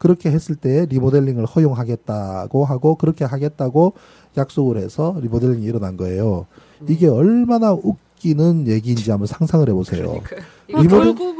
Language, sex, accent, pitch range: Korean, male, native, 130-175 Hz